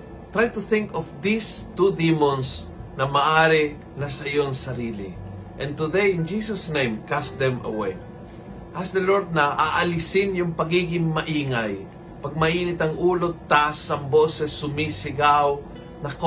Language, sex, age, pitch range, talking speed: Filipino, male, 40-59, 130-160 Hz, 135 wpm